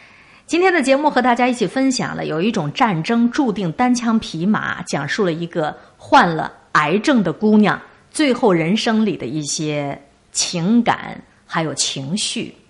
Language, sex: Chinese, female